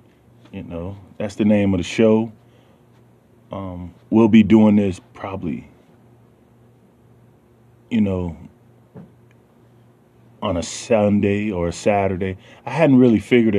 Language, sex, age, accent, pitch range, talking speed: English, male, 20-39, American, 100-120 Hz, 115 wpm